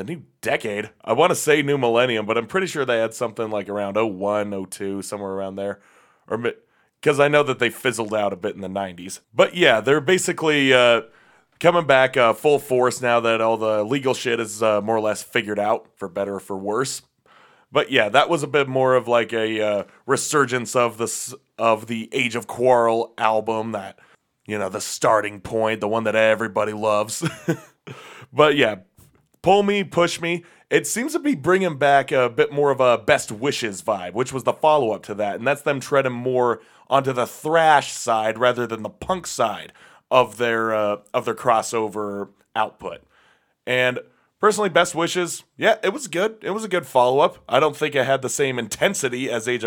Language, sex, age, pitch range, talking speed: English, male, 30-49, 110-150 Hz, 200 wpm